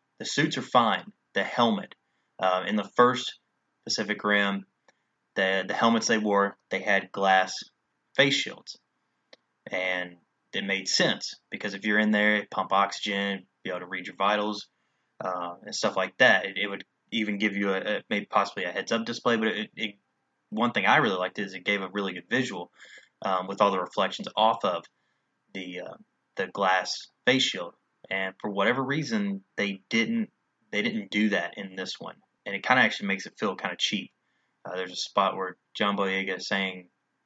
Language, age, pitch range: English, 20-39, 95-110 Hz